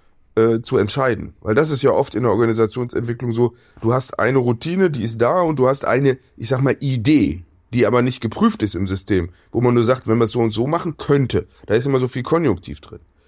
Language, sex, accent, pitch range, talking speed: German, male, German, 115-140 Hz, 240 wpm